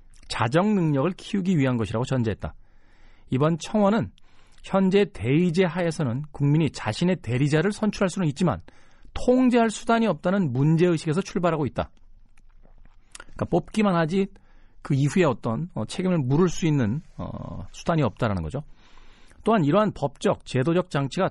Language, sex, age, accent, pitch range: Korean, male, 40-59, native, 110-185 Hz